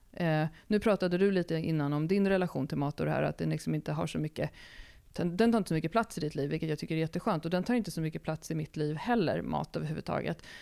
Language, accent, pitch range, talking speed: Swedish, native, 155-200 Hz, 270 wpm